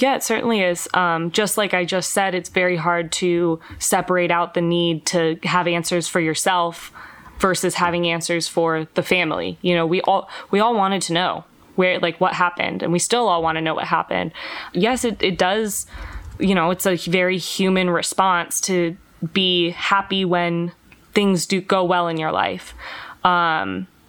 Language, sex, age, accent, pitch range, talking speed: English, female, 20-39, American, 170-195 Hz, 185 wpm